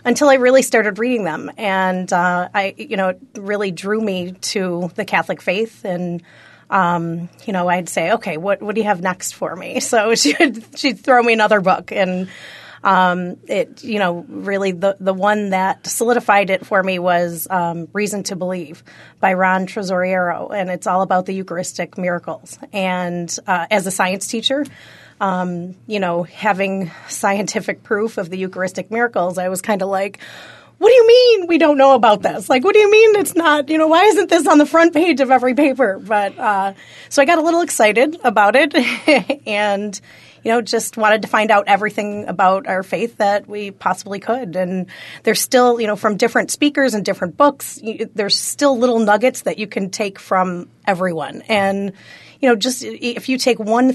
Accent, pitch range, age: American, 185-240 Hz, 30-49